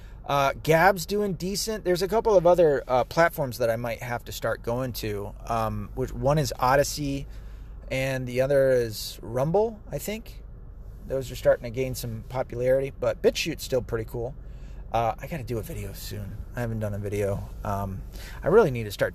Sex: male